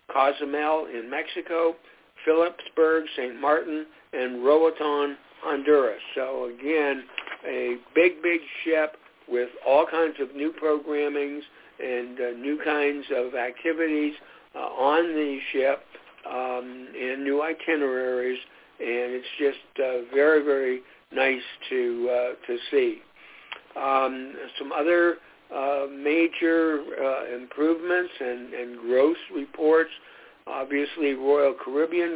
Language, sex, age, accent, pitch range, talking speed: English, male, 60-79, American, 125-160 Hz, 110 wpm